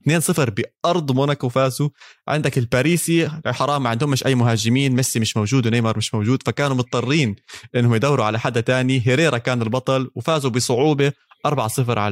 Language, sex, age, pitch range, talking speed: Arabic, male, 20-39, 120-150 Hz, 145 wpm